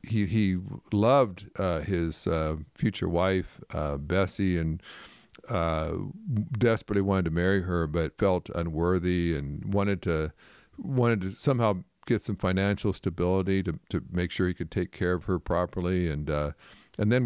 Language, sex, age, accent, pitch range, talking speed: English, male, 50-69, American, 85-105 Hz, 155 wpm